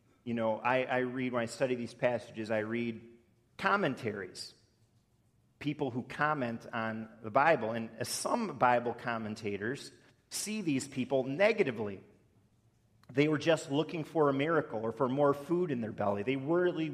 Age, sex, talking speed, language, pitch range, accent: 40-59, male, 150 wpm, English, 115-150 Hz, American